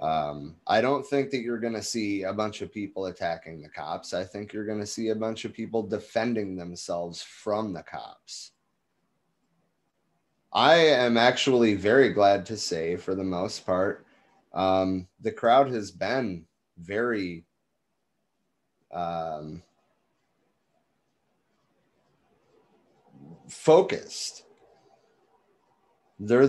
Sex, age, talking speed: male, 30-49, 115 wpm